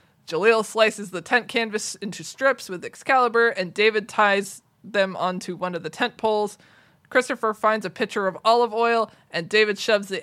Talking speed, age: 175 wpm, 20-39